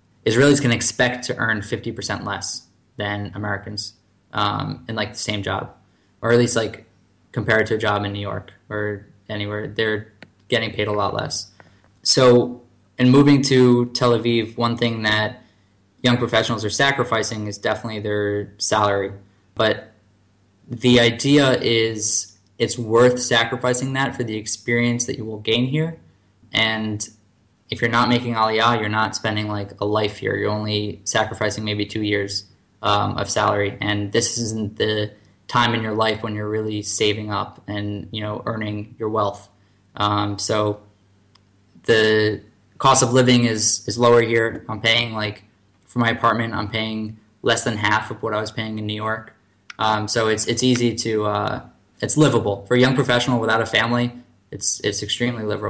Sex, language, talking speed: male, English, 170 wpm